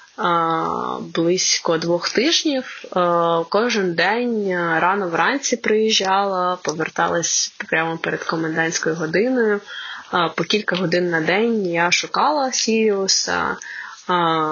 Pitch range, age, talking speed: 170-215 Hz, 20-39, 85 wpm